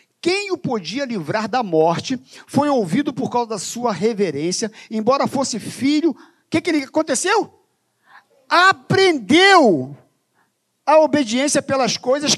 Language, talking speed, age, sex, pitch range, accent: Portuguese, 125 wpm, 50-69, male, 280-390 Hz, Brazilian